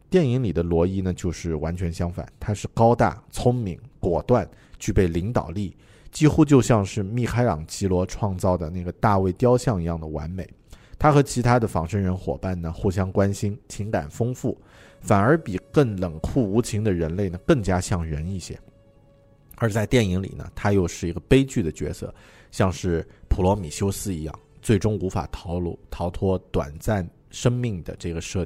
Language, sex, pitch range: Chinese, male, 85-110 Hz